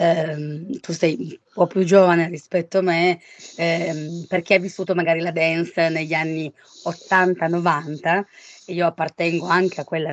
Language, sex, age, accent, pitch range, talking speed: Italian, female, 20-39, native, 160-185 Hz, 150 wpm